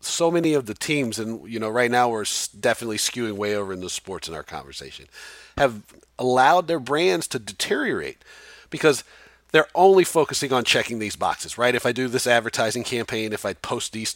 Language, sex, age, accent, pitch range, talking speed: English, male, 40-59, American, 110-145 Hz, 195 wpm